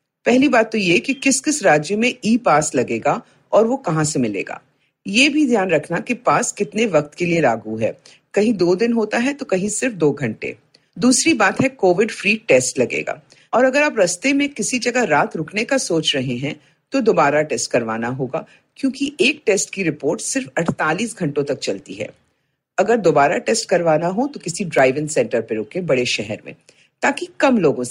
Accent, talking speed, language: native, 160 wpm, Hindi